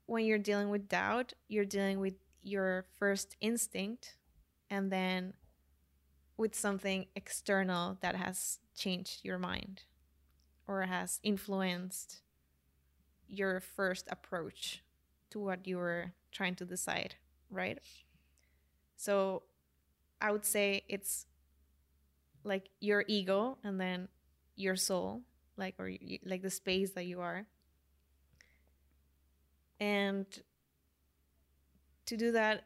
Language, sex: English, female